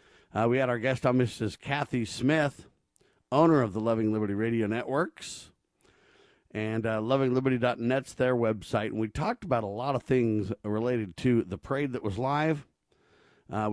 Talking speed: 160 wpm